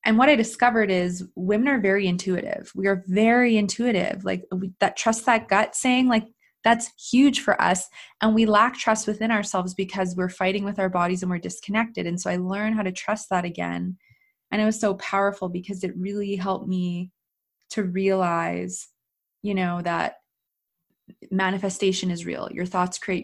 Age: 20-39